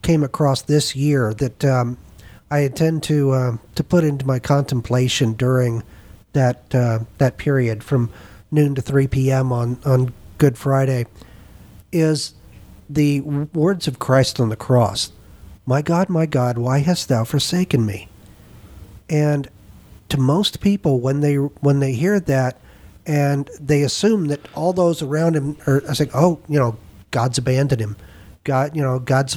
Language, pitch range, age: English, 115-150 Hz, 50-69